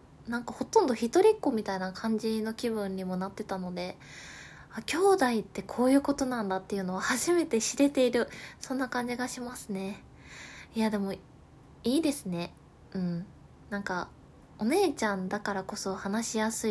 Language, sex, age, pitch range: Japanese, female, 20-39, 195-235 Hz